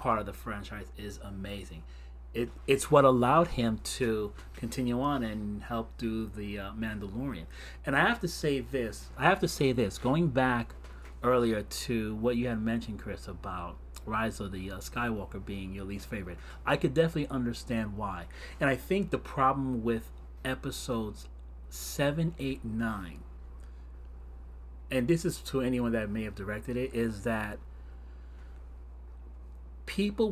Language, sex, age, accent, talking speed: English, male, 30-49, American, 155 wpm